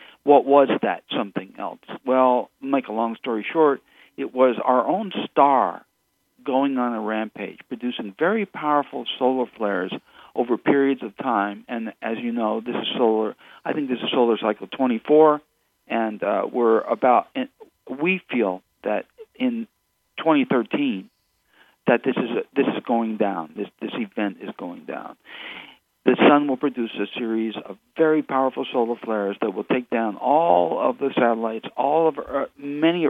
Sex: male